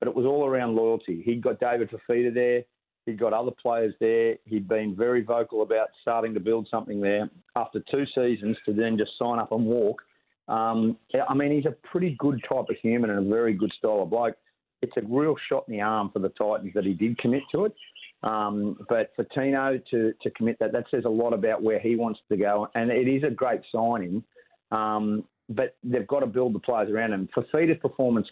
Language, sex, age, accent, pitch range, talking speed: English, male, 40-59, Australian, 105-120 Hz, 225 wpm